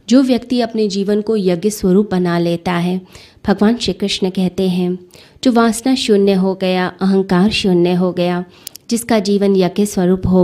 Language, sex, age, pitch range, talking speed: Hindi, female, 20-39, 180-205 Hz, 165 wpm